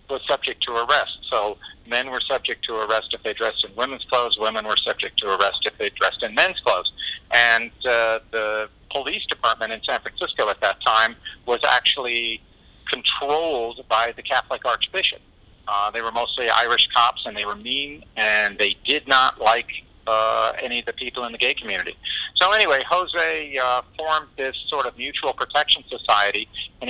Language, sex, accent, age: English, male, American, 50-69